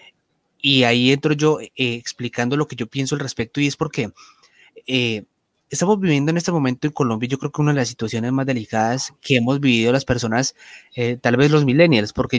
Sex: male